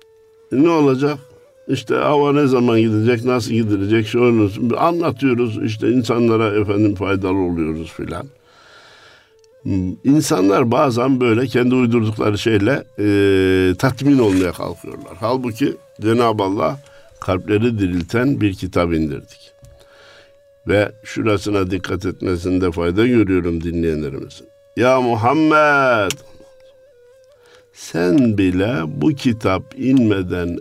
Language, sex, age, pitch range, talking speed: Turkish, male, 60-79, 105-170 Hz, 95 wpm